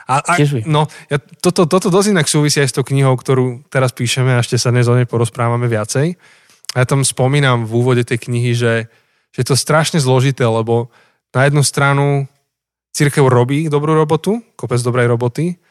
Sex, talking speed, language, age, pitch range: male, 175 wpm, Slovak, 20-39, 120-140 Hz